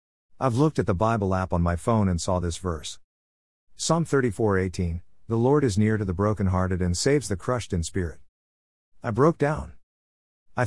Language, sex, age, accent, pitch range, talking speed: English, male, 50-69, American, 85-115 Hz, 180 wpm